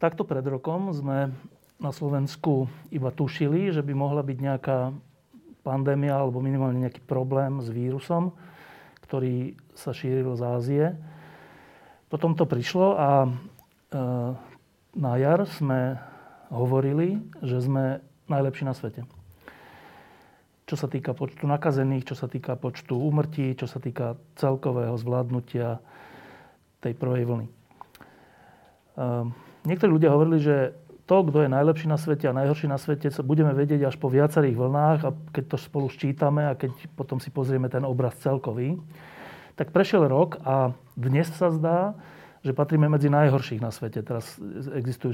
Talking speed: 140 wpm